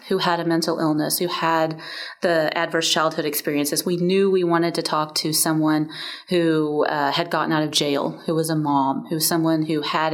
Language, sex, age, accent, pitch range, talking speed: English, female, 30-49, American, 160-210 Hz, 205 wpm